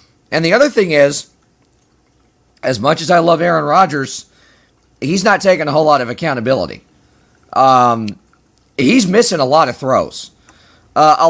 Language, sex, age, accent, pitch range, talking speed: English, male, 30-49, American, 135-170 Hz, 155 wpm